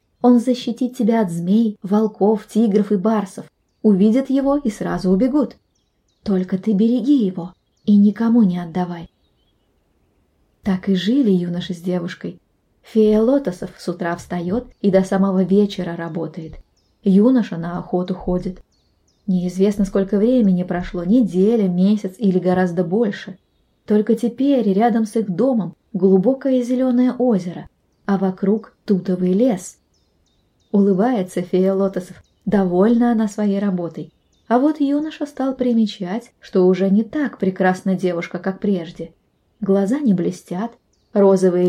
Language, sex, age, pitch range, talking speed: Russian, female, 20-39, 185-230 Hz, 125 wpm